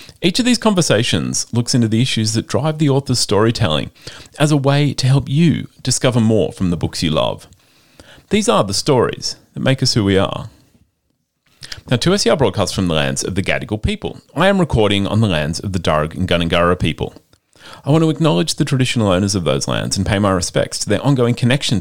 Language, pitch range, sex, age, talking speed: English, 95-130 Hz, male, 30-49, 215 wpm